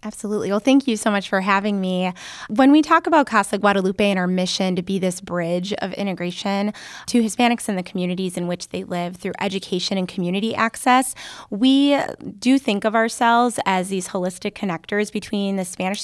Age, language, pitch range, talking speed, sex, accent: 20-39, English, 185-225 Hz, 185 wpm, female, American